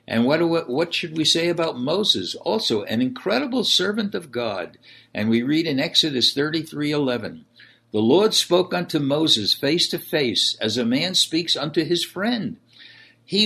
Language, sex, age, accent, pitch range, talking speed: English, male, 60-79, American, 120-175 Hz, 165 wpm